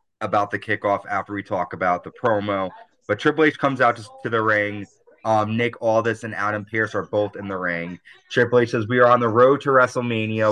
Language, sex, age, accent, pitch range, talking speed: English, male, 30-49, American, 100-115 Hz, 220 wpm